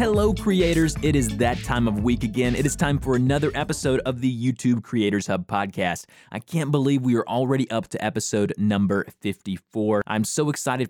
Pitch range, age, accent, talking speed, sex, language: 110-155 Hz, 20-39, American, 195 wpm, male, English